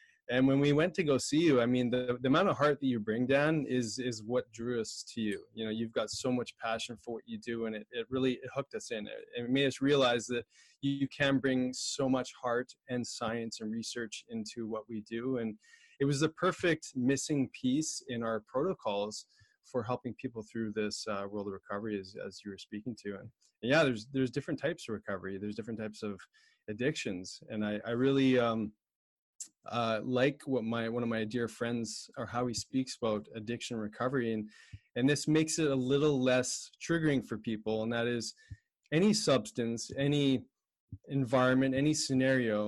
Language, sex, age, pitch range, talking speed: English, male, 20-39, 110-135 Hz, 205 wpm